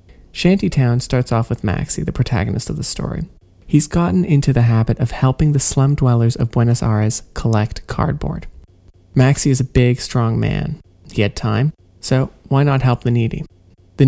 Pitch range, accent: 115-140 Hz, American